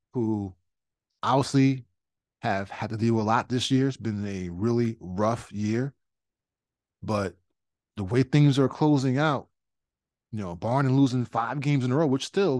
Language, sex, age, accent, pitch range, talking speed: English, male, 20-39, American, 100-130 Hz, 170 wpm